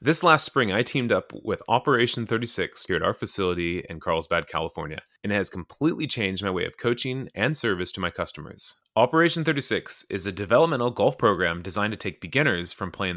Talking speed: 195 wpm